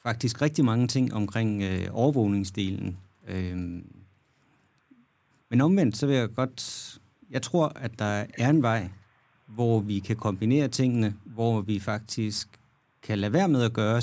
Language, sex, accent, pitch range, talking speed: Danish, male, native, 105-130 Hz, 140 wpm